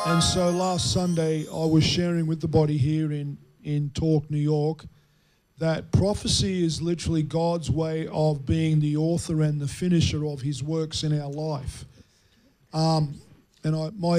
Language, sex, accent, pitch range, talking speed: English, male, Australian, 150-175 Hz, 160 wpm